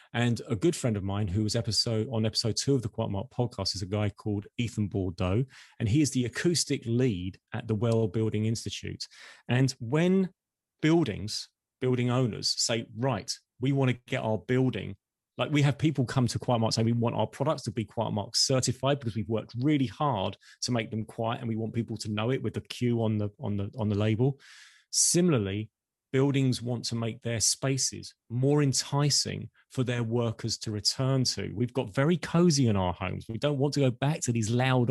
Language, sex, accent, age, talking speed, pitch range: English, male, British, 30-49, 210 wpm, 110-135 Hz